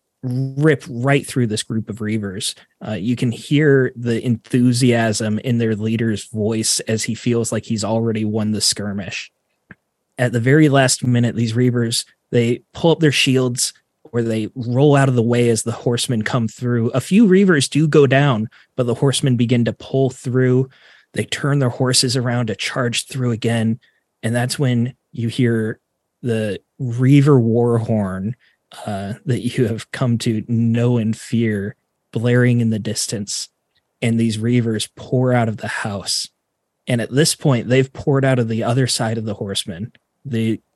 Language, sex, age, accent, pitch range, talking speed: English, male, 30-49, American, 110-130 Hz, 170 wpm